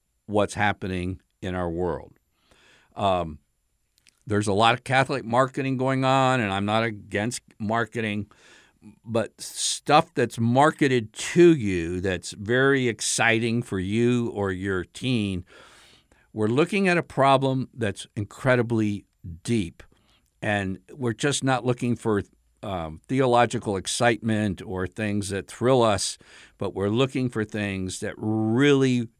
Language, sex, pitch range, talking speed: English, male, 95-120 Hz, 125 wpm